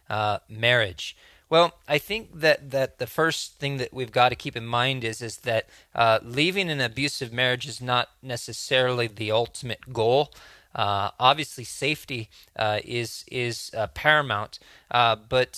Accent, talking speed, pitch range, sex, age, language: American, 160 wpm, 115-135 Hz, male, 20-39, English